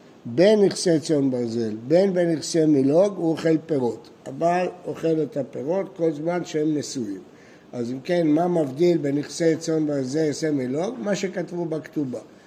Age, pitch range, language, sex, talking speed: 60-79, 145-180 Hz, Hebrew, male, 140 wpm